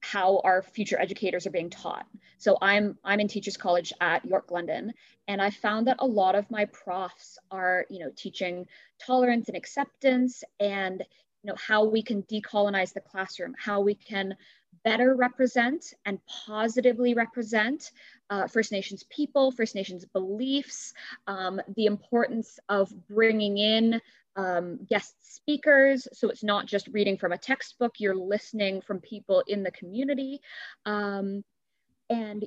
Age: 20-39